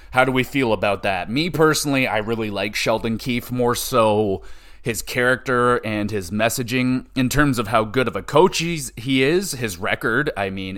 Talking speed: 195 wpm